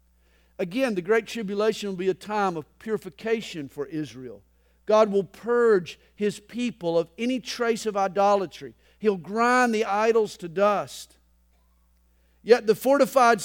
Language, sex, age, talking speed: English, male, 50-69, 140 wpm